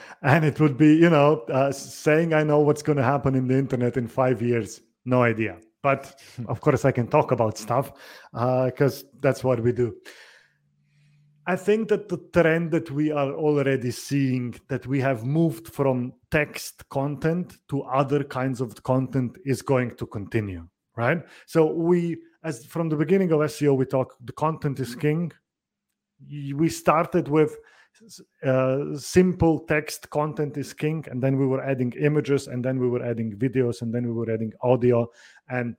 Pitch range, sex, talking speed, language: 125-160 Hz, male, 175 wpm, English